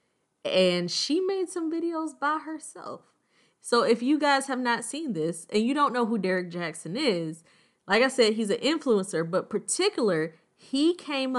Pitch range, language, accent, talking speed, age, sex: 185-250 Hz, English, American, 175 wpm, 20-39, female